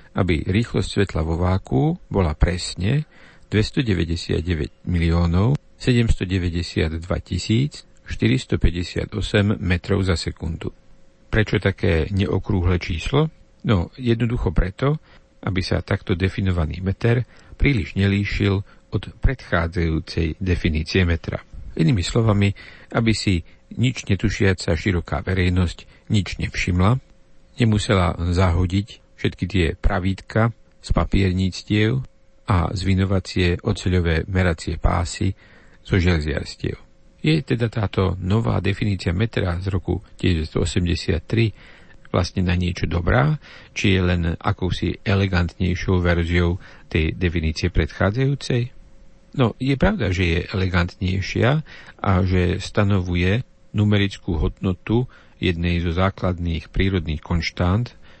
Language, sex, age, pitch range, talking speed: Slovak, male, 50-69, 90-105 Hz, 95 wpm